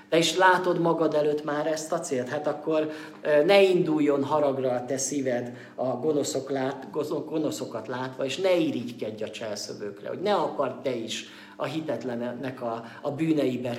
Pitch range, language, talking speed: 125-150 Hz, Hungarian, 160 wpm